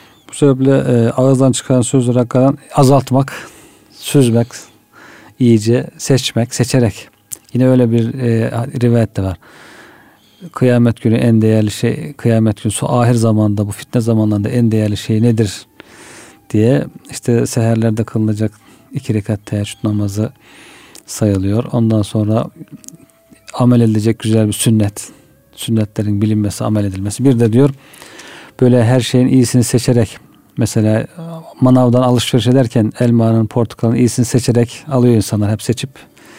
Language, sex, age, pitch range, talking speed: Turkish, male, 50-69, 110-130 Hz, 120 wpm